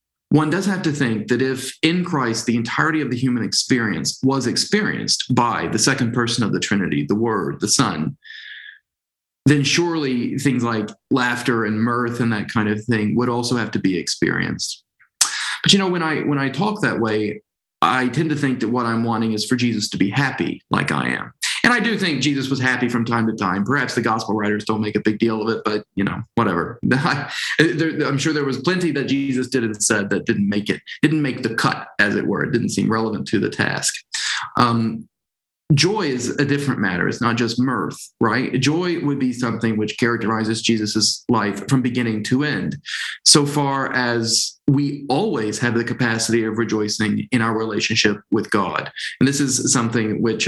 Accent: American